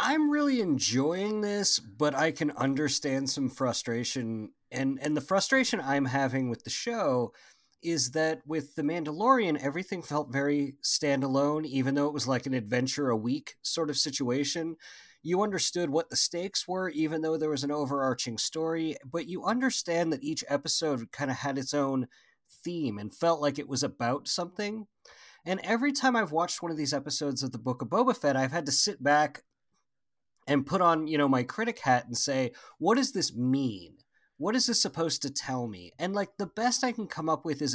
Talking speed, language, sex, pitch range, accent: 195 wpm, English, male, 130-170 Hz, American